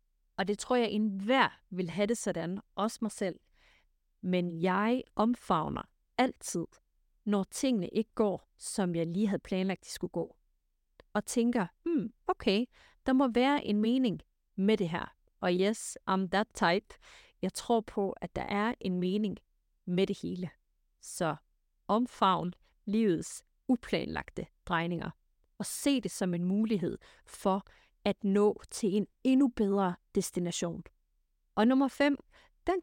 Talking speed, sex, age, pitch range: 145 wpm, female, 30-49, 180-235 Hz